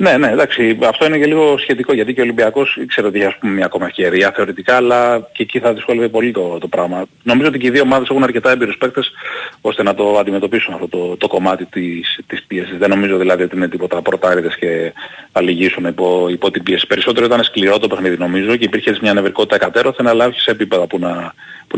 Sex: male